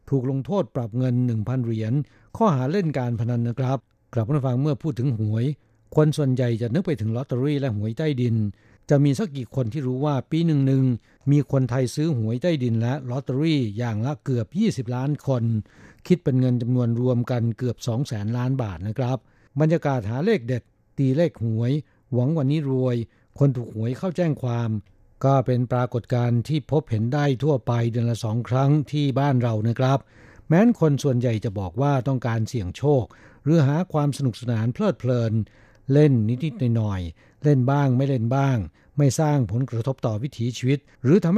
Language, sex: Thai, male